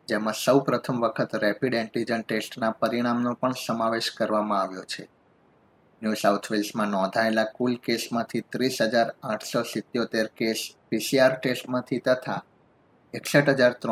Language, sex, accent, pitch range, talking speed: Gujarati, male, native, 110-130 Hz, 110 wpm